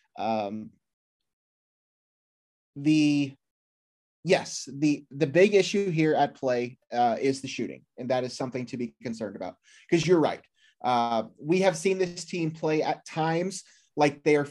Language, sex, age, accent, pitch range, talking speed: English, male, 30-49, American, 130-175 Hz, 155 wpm